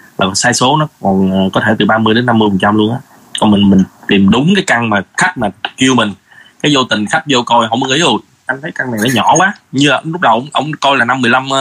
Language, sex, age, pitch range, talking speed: Vietnamese, male, 20-39, 110-140 Hz, 265 wpm